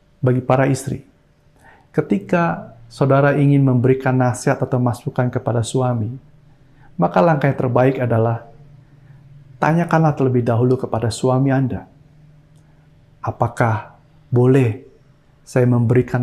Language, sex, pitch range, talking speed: Indonesian, male, 120-140 Hz, 100 wpm